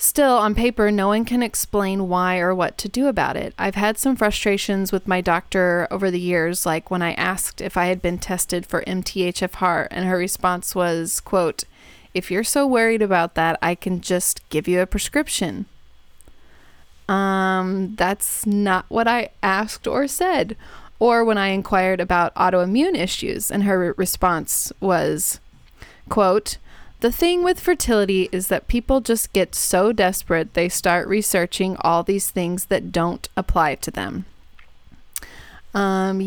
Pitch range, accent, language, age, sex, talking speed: 180-225 Hz, American, English, 20-39, female, 160 wpm